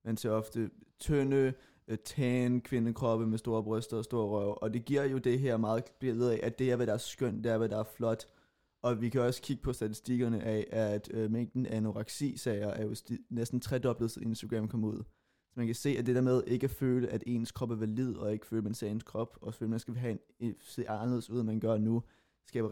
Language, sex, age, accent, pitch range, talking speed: Danish, male, 20-39, native, 110-125 Hz, 255 wpm